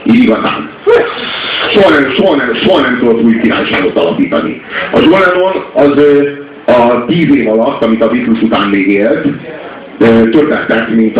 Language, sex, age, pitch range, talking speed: Hungarian, male, 50-69, 110-145 Hz, 135 wpm